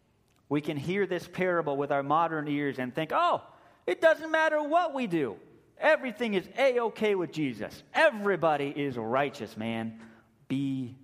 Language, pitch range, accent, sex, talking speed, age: English, 115-165 Hz, American, male, 150 wpm, 30-49